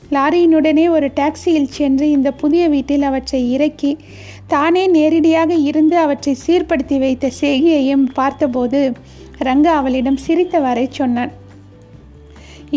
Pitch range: 275-320 Hz